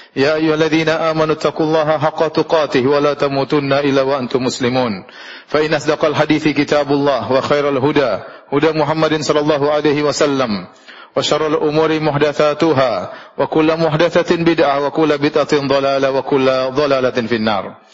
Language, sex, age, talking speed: Indonesian, male, 30-49, 65 wpm